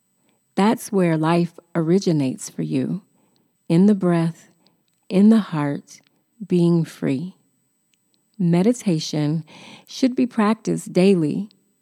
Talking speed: 95 wpm